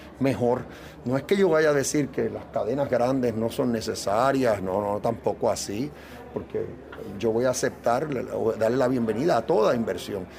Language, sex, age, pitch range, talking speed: Spanish, male, 40-59, 110-160 Hz, 175 wpm